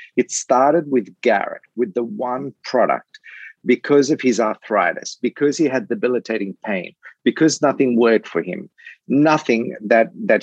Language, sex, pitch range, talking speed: English, male, 110-145 Hz, 145 wpm